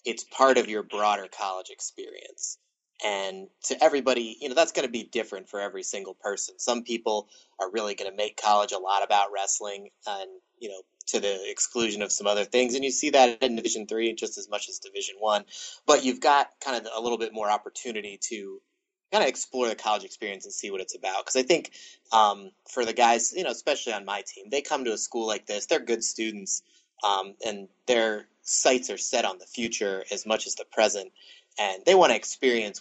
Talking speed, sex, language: 220 wpm, male, English